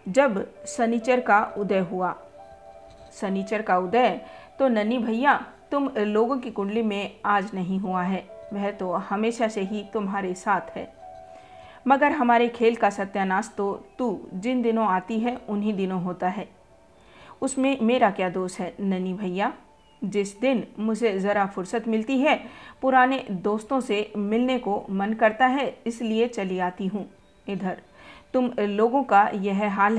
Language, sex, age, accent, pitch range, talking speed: Hindi, female, 50-69, native, 190-230 Hz, 150 wpm